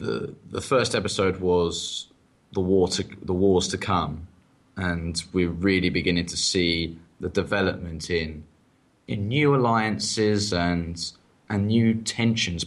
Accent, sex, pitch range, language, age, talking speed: British, male, 90-110 Hz, English, 20-39, 135 wpm